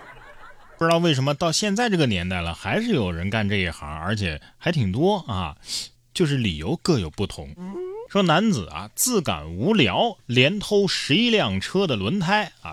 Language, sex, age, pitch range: Chinese, male, 20-39, 100-165 Hz